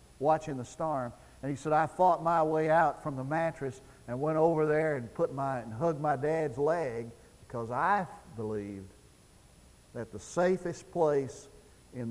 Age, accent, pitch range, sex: 60-79, American, 105-160 Hz, male